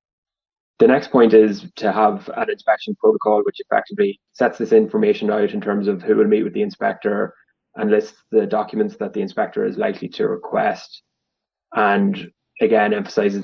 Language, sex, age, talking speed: English, male, 20-39, 170 wpm